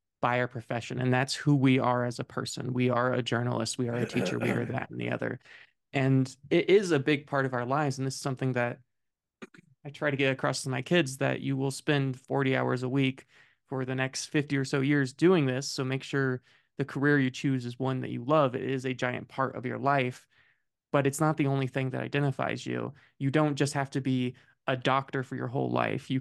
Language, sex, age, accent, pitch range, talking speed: English, male, 20-39, American, 130-145 Hz, 245 wpm